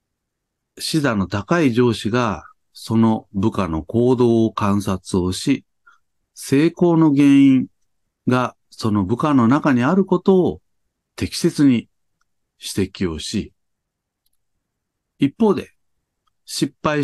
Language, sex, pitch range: Japanese, male, 90-135 Hz